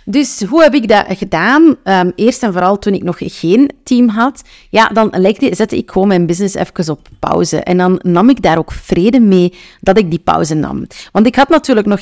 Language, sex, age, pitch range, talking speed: Dutch, female, 30-49, 175-230 Hz, 215 wpm